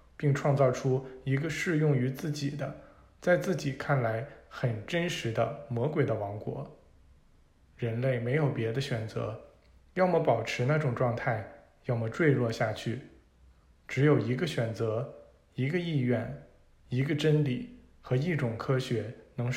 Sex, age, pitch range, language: male, 20-39, 110-145 Hz, Chinese